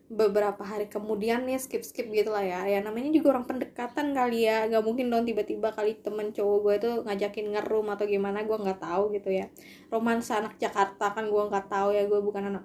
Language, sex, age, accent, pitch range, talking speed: English, female, 20-39, Indonesian, 220-320 Hz, 205 wpm